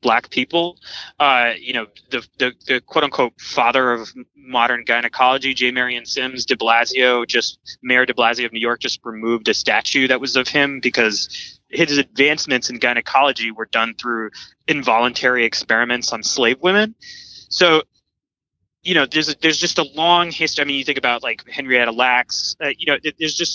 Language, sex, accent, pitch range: English, male, American, 120-150 Hz